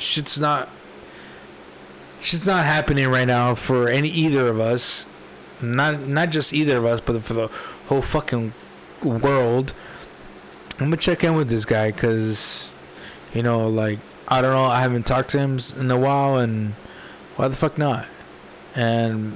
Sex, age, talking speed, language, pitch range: male, 20-39, 160 wpm, English, 115-140 Hz